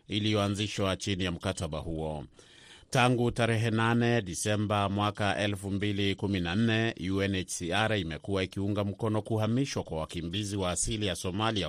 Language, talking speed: Swahili, 110 wpm